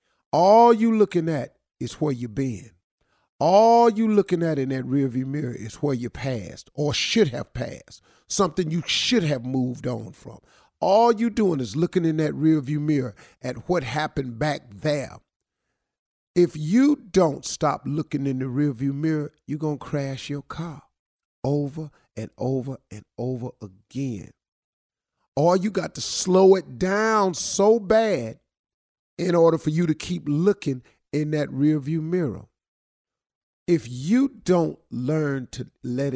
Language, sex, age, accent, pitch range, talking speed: English, male, 50-69, American, 125-175 Hz, 155 wpm